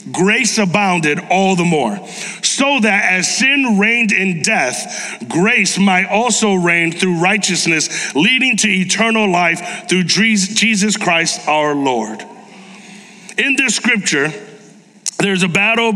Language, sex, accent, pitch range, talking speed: English, male, American, 190-225 Hz, 125 wpm